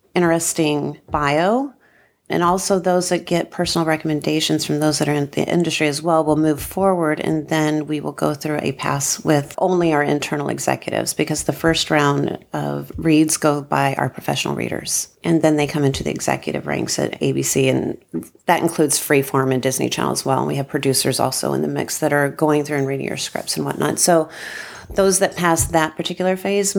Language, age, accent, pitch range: English, 40-59, American, 145-175 Hz